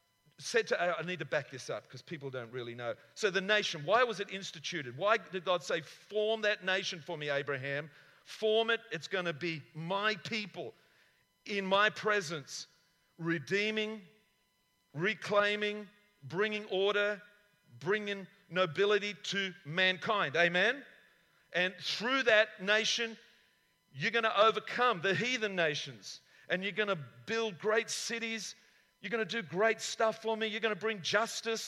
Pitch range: 180-225 Hz